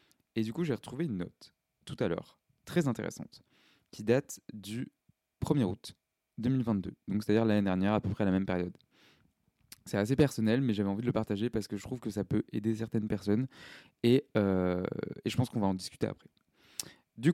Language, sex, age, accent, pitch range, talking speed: French, male, 20-39, French, 100-120 Hz, 205 wpm